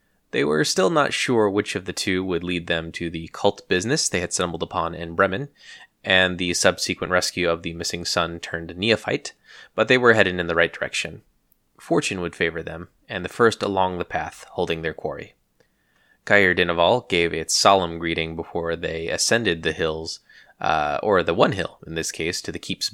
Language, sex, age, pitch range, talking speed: English, male, 20-39, 85-95 Hz, 195 wpm